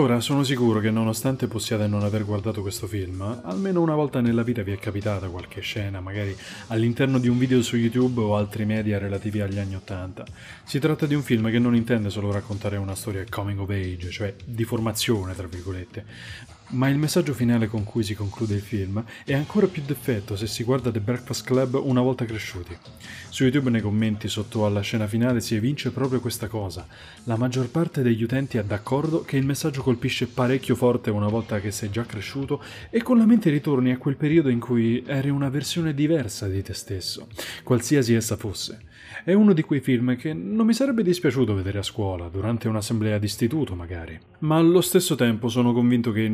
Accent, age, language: native, 20-39, Italian